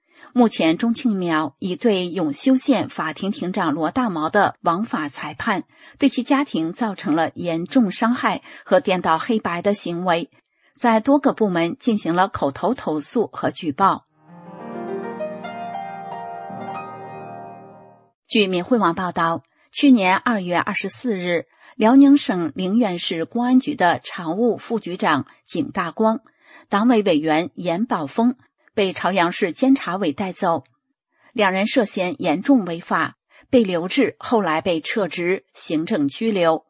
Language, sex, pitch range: English, female, 170-245 Hz